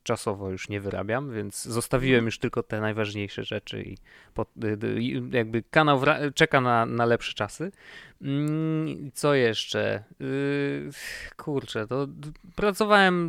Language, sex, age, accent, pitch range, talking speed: Polish, male, 20-39, native, 110-140 Hz, 115 wpm